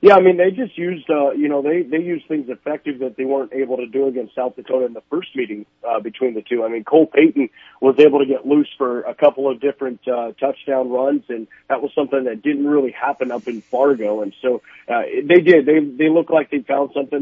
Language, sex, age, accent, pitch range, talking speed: English, male, 40-59, American, 115-140 Hz, 245 wpm